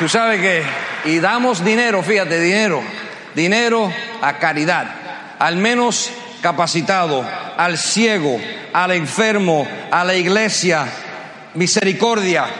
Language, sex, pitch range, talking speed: Spanish, male, 165-225 Hz, 105 wpm